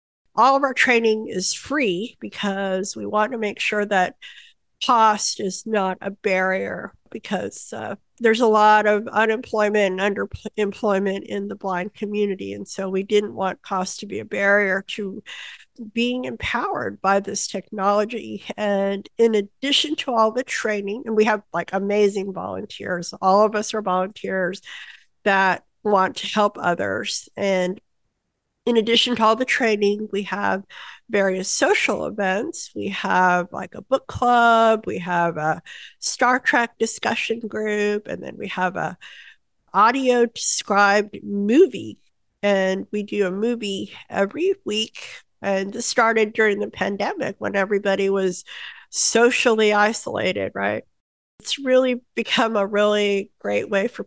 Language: English